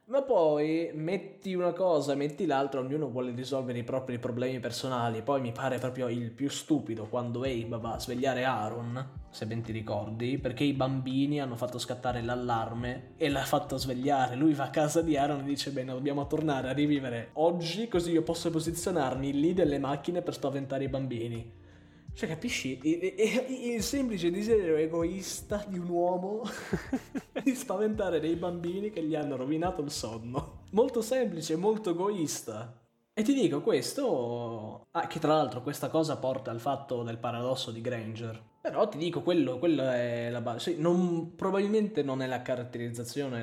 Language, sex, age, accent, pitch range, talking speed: Italian, male, 20-39, native, 120-165 Hz, 175 wpm